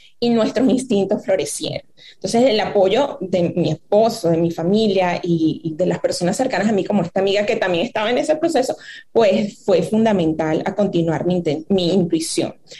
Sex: female